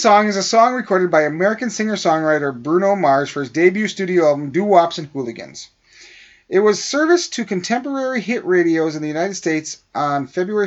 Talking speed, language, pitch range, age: 175 wpm, English, 155-205 Hz, 40-59